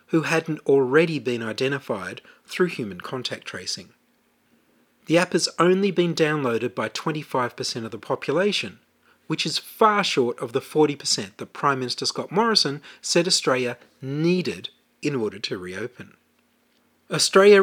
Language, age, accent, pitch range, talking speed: English, 30-49, Australian, 135-185 Hz, 135 wpm